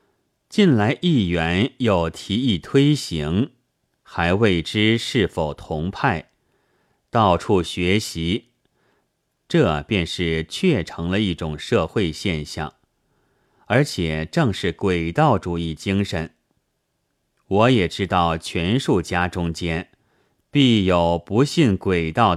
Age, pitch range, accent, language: 30-49, 85-120 Hz, native, Chinese